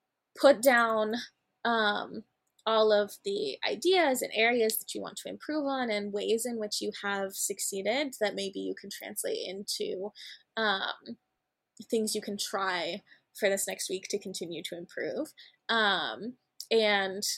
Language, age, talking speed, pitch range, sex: English, 20-39, 150 wpm, 205-245 Hz, female